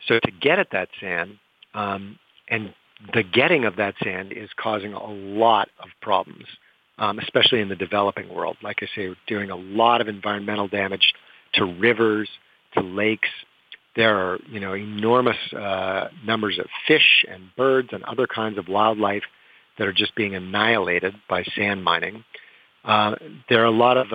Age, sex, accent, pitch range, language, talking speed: 50-69, male, American, 100-115 Hz, English, 165 wpm